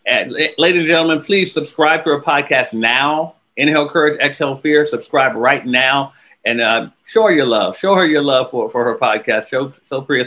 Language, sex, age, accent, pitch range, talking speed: English, male, 50-69, American, 145-190 Hz, 200 wpm